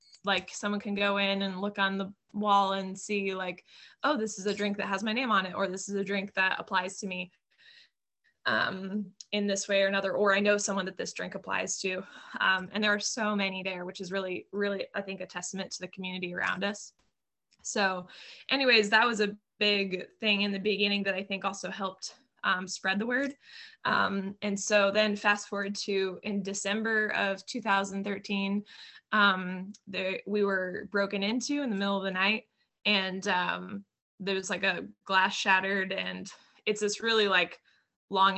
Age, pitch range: 20-39, 190-205 Hz